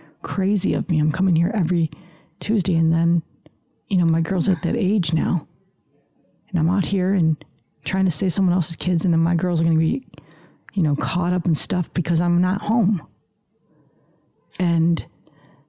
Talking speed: 185 wpm